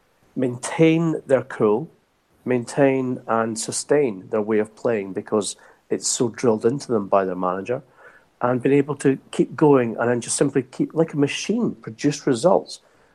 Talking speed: 160 wpm